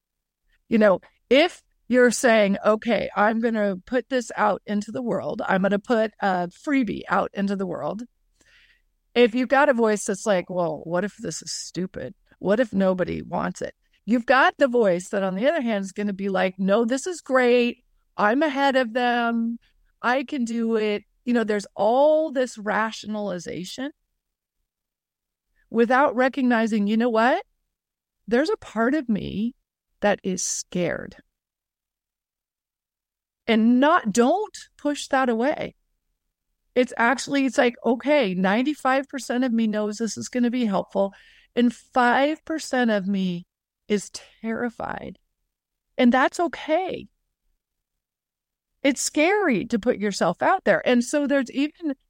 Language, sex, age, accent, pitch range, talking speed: English, female, 40-59, American, 210-270 Hz, 150 wpm